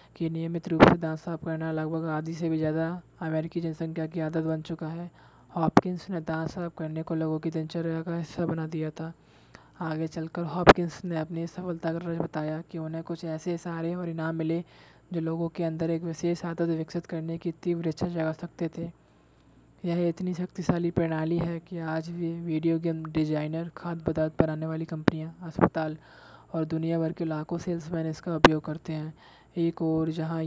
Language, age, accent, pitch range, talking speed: Hindi, 20-39, native, 160-170 Hz, 185 wpm